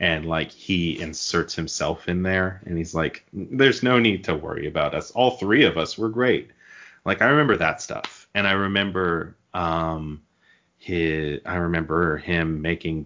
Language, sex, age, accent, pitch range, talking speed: English, male, 30-49, American, 80-100 Hz, 170 wpm